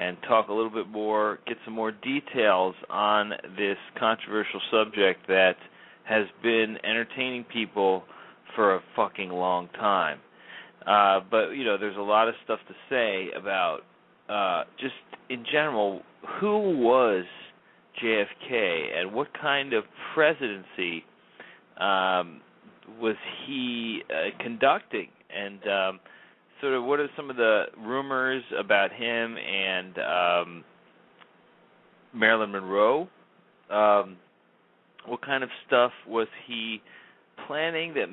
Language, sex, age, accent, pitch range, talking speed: English, male, 40-59, American, 95-120 Hz, 125 wpm